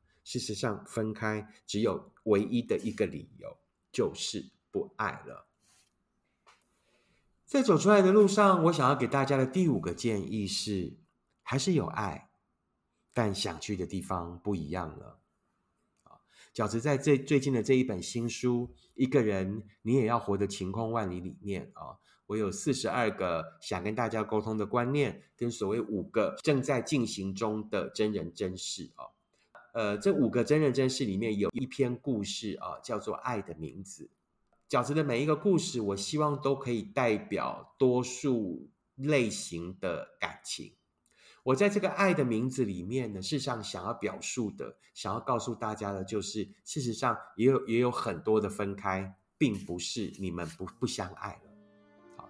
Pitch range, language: 100-135 Hz, Chinese